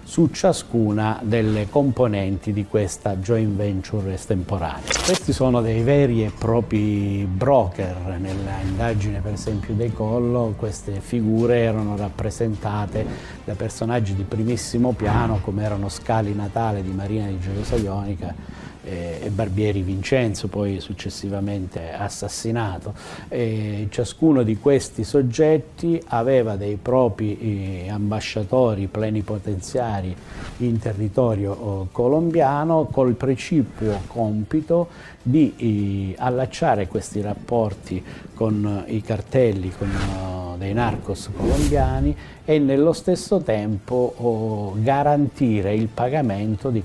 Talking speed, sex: 100 wpm, male